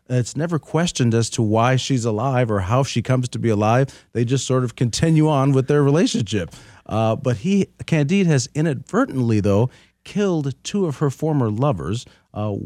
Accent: American